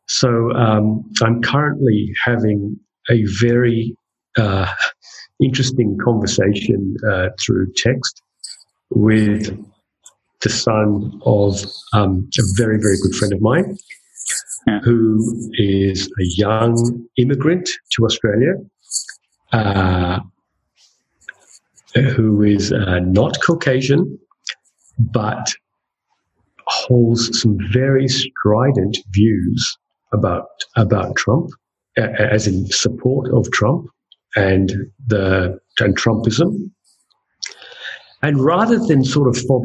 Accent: British